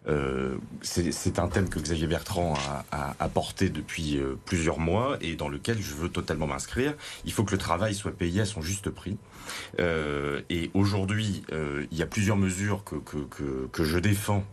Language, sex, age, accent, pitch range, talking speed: French, male, 30-49, French, 80-105 Hz, 185 wpm